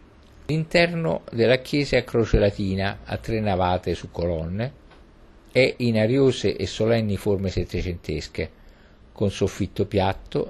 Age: 50-69